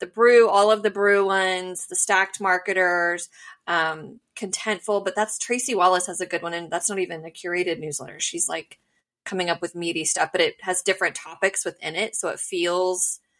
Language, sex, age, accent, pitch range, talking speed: English, female, 20-39, American, 170-220 Hz, 195 wpm